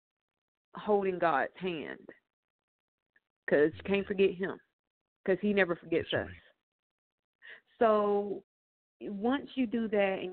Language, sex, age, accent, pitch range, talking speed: English, female, 40-59, American, 175-210 Hz, 110 wpm